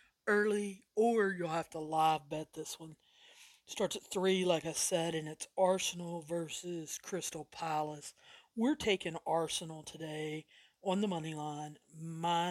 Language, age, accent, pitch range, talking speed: English, 40-59, American, 160-190 Hz, 145 wpm